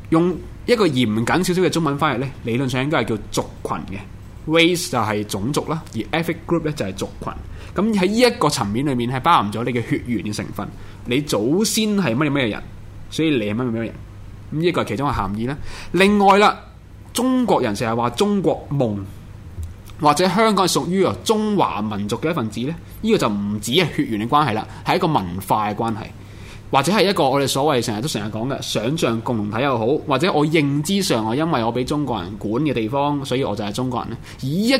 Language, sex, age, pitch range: Chinese, male, 20-39, 105-155 Hz